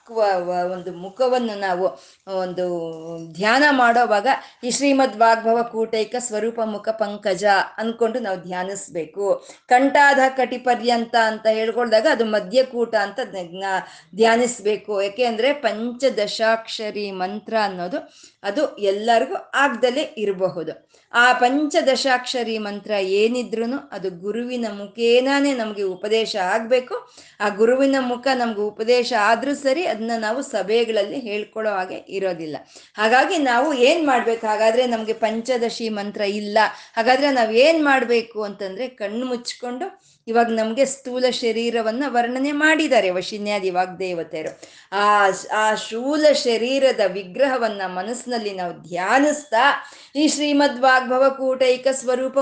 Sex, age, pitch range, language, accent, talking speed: female, 20-39, 205-260 Hz, Kannada, native, 105 wpm